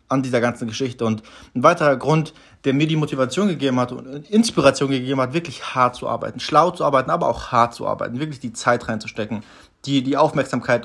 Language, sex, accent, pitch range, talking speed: German, male, German, 115-155 Hz, 205 wpm